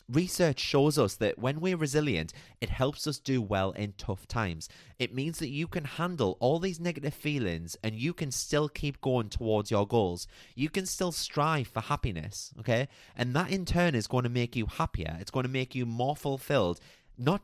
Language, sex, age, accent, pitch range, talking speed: English, male, 30-49, British, 105-150 Hz, 205 wpm